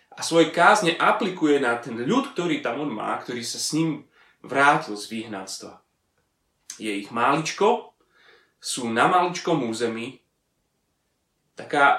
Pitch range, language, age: 120-165 Hz, Slovak, 30-49